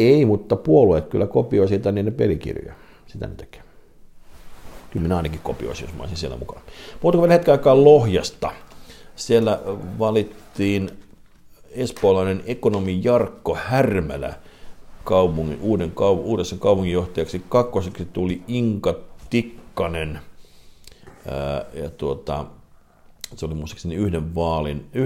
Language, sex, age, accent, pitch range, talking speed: Finnish, male, 50-69, native, 80-105 Hz, 105 wpm